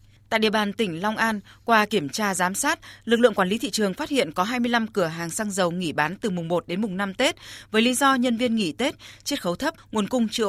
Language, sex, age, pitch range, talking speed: Vietnamese, female, 20-39, 175-225 Hz, 270 wpm